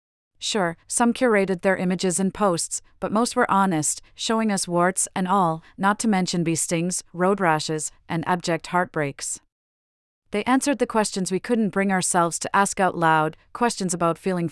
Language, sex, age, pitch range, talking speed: English, female, 40-59, 165-200 Hz, 170 wpm